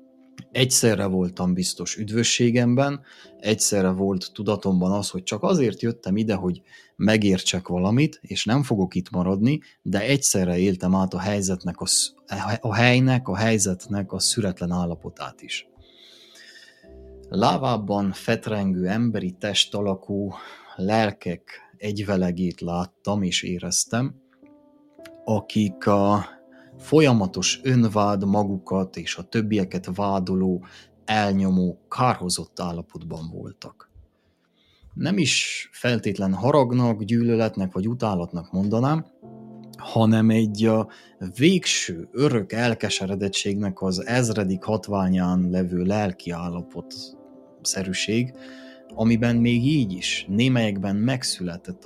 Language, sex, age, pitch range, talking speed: Hungarian, male, 30-49, 95-120 Hz, 100 wpm